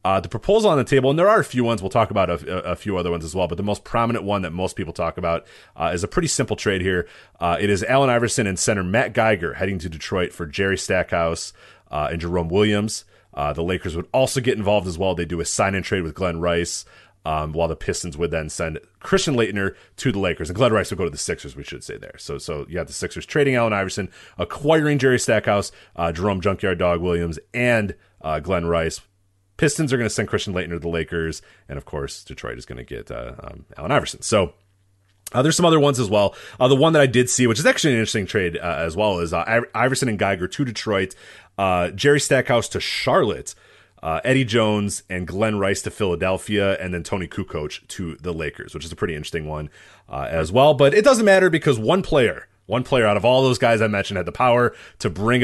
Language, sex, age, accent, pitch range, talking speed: English, male, 30-49, American, 90-120 Hz, 240 wpm